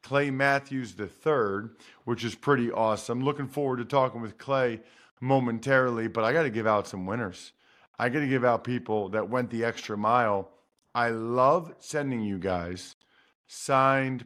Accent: American